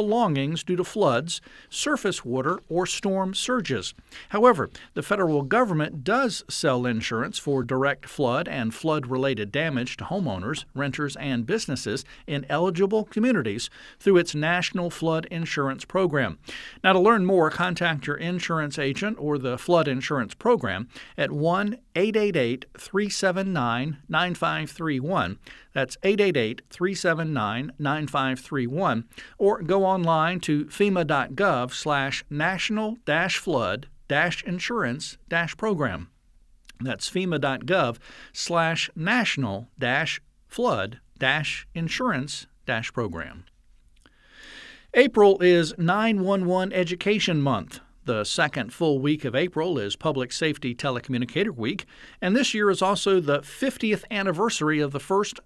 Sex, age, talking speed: male, 50-69, 95 wpm